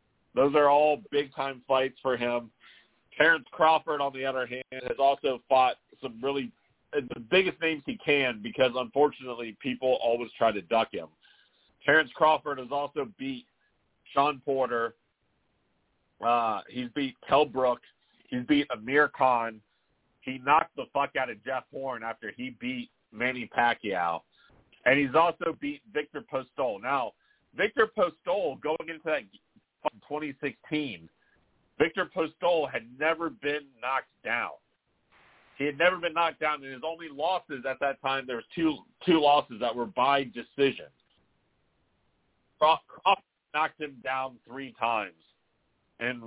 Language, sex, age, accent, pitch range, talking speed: English, male, 40-59, American, 125-155 Hz, 140 wpm